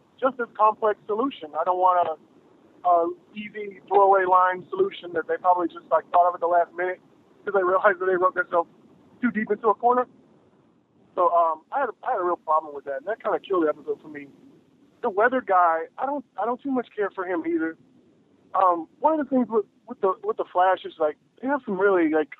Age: 20-39